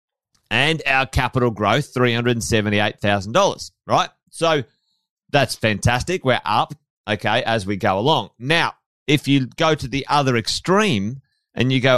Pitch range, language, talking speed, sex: 105-145 Hz, English, 135 wpm, male